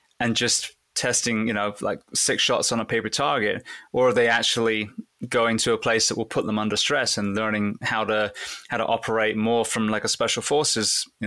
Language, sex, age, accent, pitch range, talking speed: English, male, 20-39, British, 105-130 Hz, 215 wpm